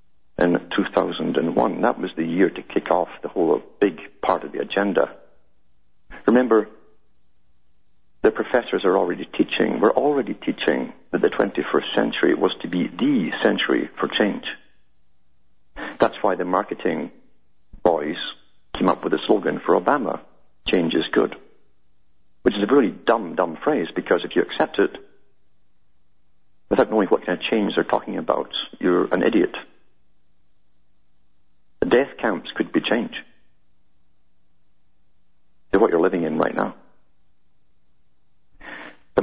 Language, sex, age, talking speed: English, male, 50-69, 135 wpm